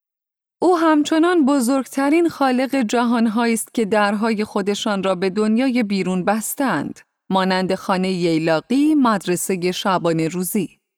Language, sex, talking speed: Persian, female, 105 wpm